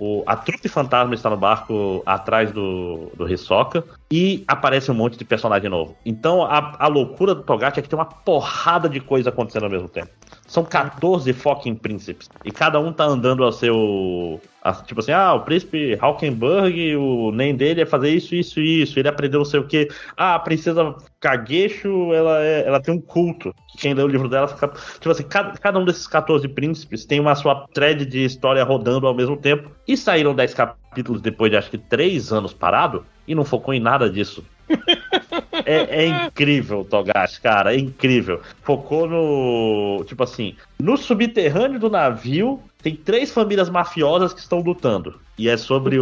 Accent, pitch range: Brazilian, 120-165 Hz